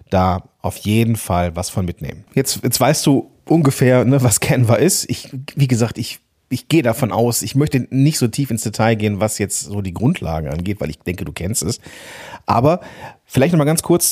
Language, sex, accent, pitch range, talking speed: German, male, German, 100-135 Hz, 215 wpm